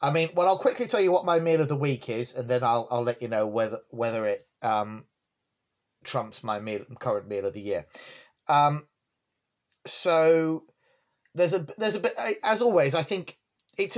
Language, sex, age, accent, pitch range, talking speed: English, male, 30-49, British, 120-155 Hz, 195 wpm